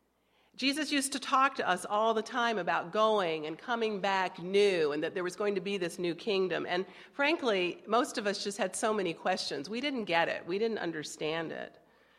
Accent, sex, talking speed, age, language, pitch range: American, female, 210 wpm, 50-69, English, 165-220 Hz